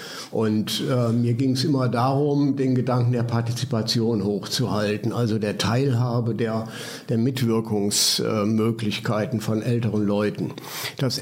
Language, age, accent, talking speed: German, 60-79, German, 125 wpm